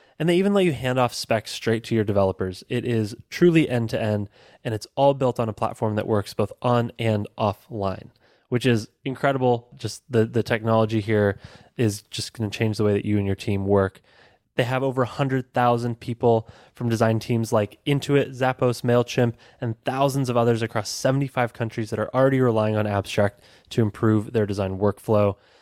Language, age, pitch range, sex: English, 20-39, 110-130 Hz, male